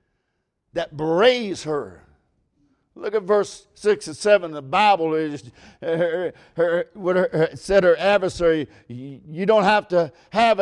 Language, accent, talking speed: English, American, 125 wpm